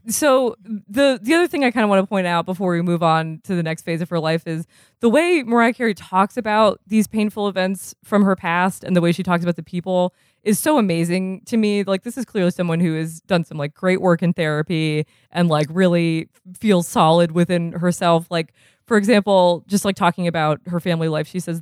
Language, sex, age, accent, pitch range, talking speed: English, female, 20-39, American, 165-200 Hz, 230 wpm